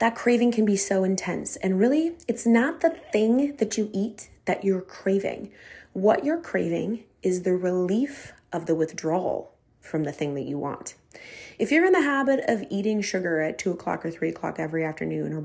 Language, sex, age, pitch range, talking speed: English, female, 20-39, 160-220 Hz, 195 wpm